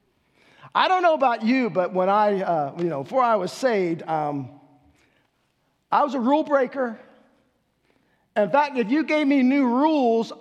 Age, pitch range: 50-69, 170-250 Hz